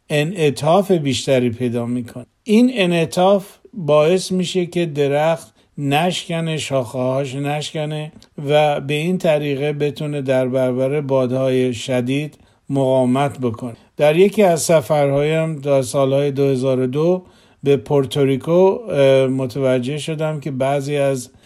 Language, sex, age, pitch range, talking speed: Persian, male, 50-69, 135-160 Hz, 105 wpm